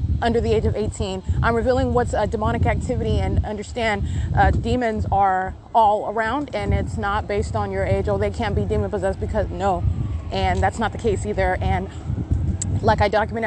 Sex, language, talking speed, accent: female, English, 190 wpm, American